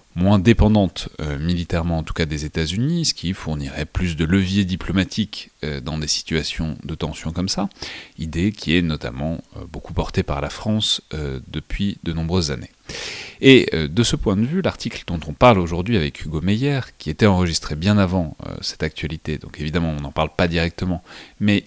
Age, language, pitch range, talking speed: 30-49, French, 80-95 Hz, 195 wpm